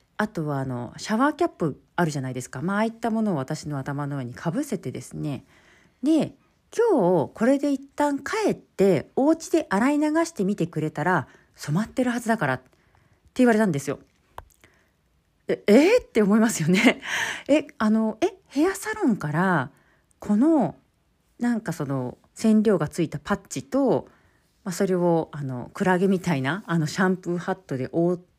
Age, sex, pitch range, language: 40-59, female, 150-245 Hz, Japanese